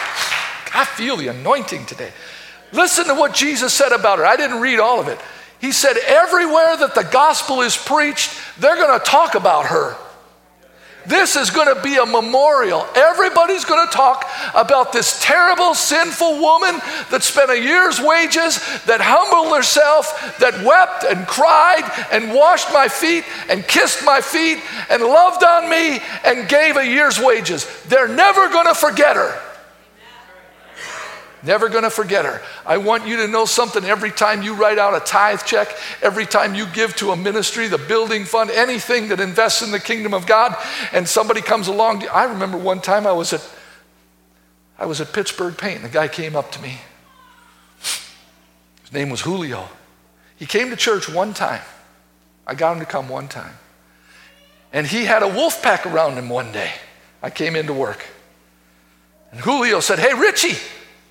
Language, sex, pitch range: English, male, 180-300 Hz